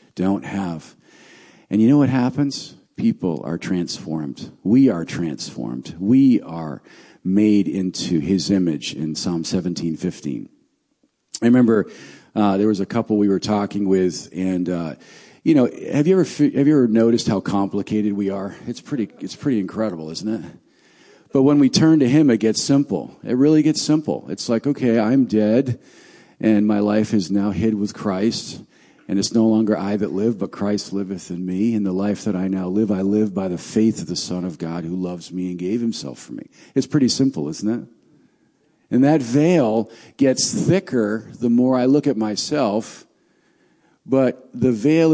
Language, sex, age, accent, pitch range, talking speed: English, male, 50-69, American, 95-125 Hz, 180 wpm